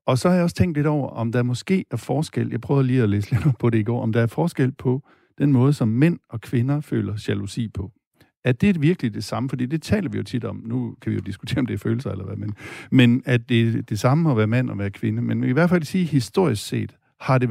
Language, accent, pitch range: Danish, native, 105-130 Hz